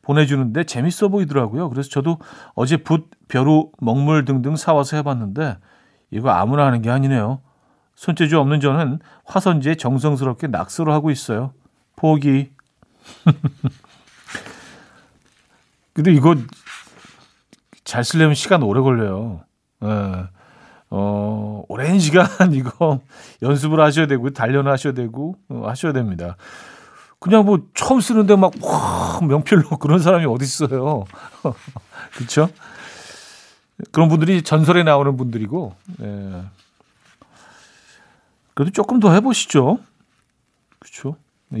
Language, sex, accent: Korean, male, native